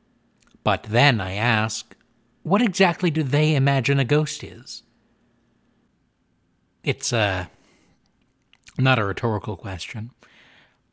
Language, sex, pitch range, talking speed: English, male, 105-140 Hz, 105 wpm